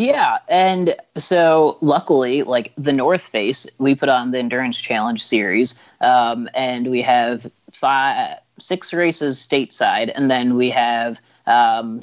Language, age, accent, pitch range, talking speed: English, 30-49, American, 115-140 Hz, 140 wpm